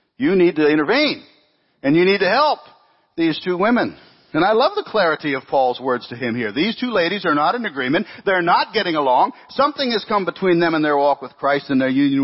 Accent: American